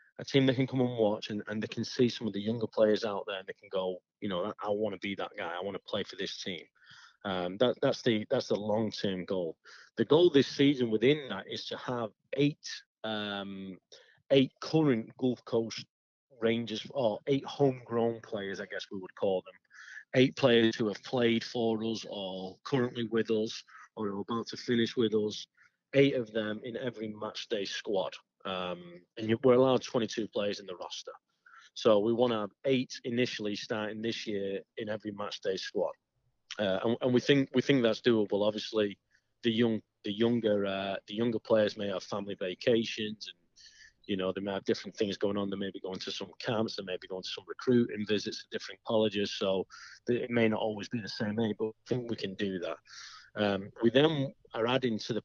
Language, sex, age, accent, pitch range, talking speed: English, male, 30-49, British, 105-120 Hz, 215 wpm